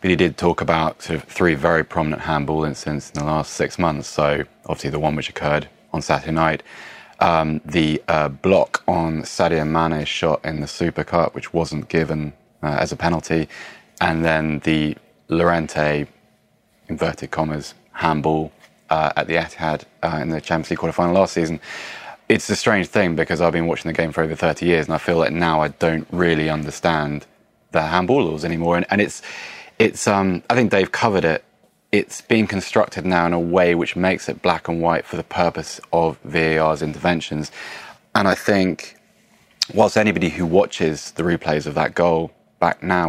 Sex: male